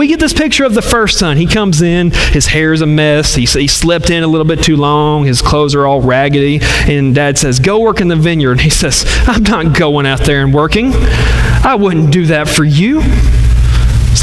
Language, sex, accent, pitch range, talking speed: English, male, American, 125-180 Hz, 230 wpm